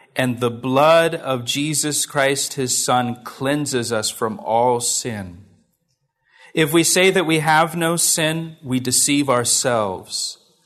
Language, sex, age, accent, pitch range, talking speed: English, male, 40-59, American, 120-160 Hz, 135 wpm